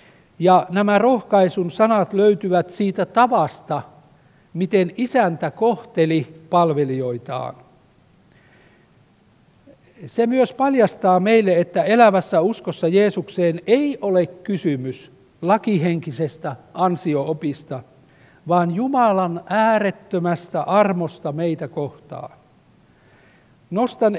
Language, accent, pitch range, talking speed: Finnish, native, 150-205 Hz, 75 wpm